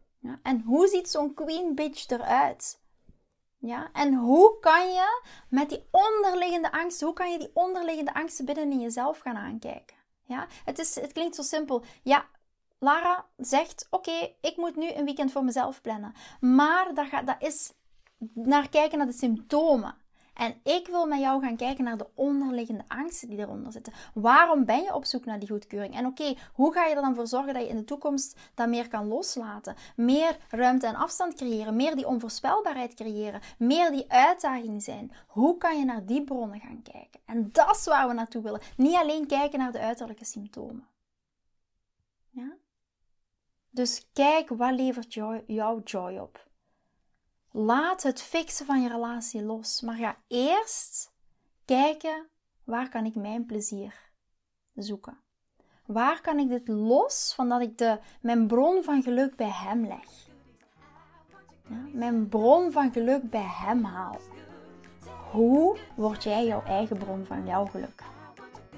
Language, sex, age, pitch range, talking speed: Dutch, female, 20-39, 230-300 Hz, 165 wpm